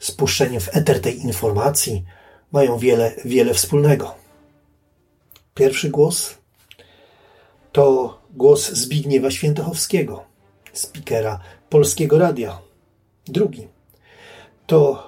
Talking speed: 80 wpm